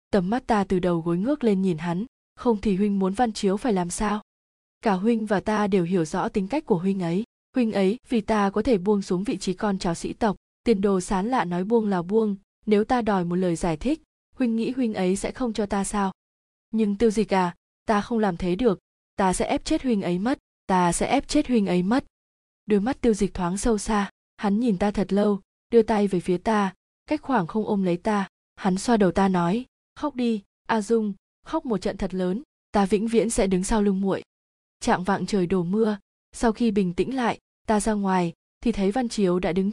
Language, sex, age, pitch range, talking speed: Vietnamese, female, 20-39, 185-225 Hz, 235 wpm